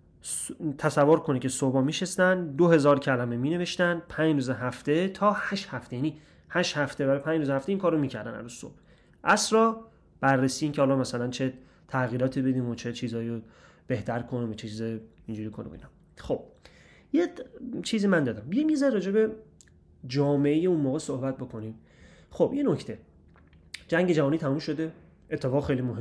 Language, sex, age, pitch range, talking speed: Persian, male, 30-49, 125-155 Hz, 155 wpm